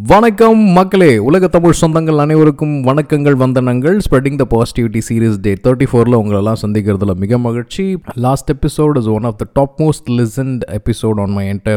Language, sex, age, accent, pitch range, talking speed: Tamil, male, 20-39, native, 110-145 Hz, 115 wpm